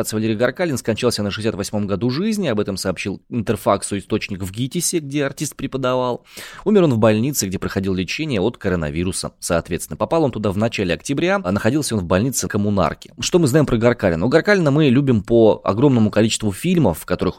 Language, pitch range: Russian, 95-125 Hz